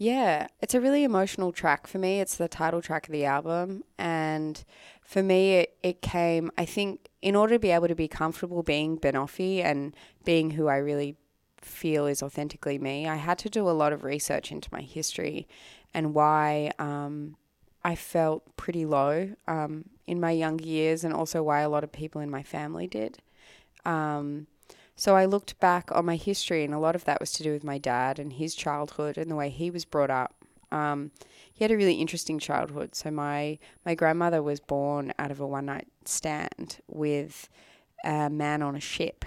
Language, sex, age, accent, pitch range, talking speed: English, female, 20-39, Australian, 145-170 Hz, 195 wpm